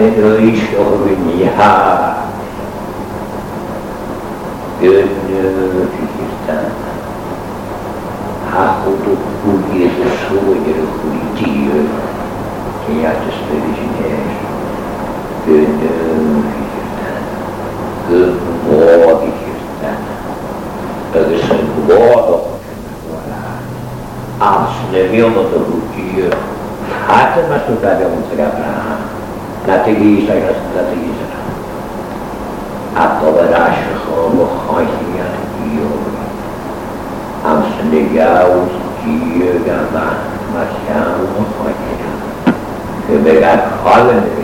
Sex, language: male, English